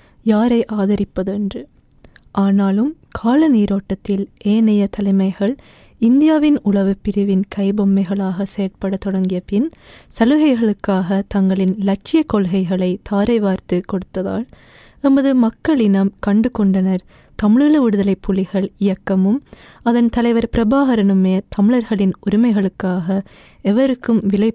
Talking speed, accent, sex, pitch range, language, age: 85 wpm, native, female, 190-225 Hz, Tamil, 20-39